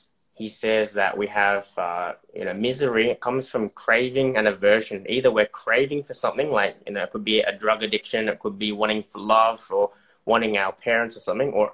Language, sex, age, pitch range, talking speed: English, male, 20-39, 105-120 Hz, 215 wpm